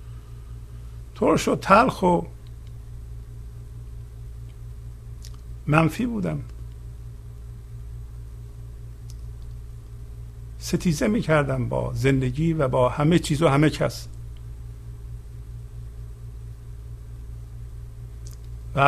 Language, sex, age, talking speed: Persian, male, 60-79, 55 wpm